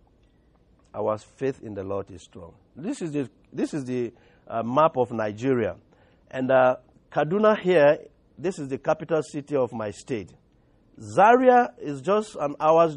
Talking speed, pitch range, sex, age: 150 wpm, 125-170 Hz, male, 50-69